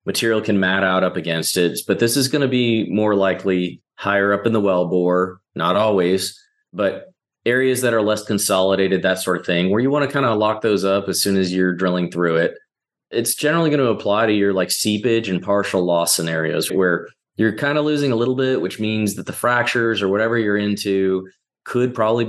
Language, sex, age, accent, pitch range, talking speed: English, male, 30-49, American, 95-115 Hz, 220 wpm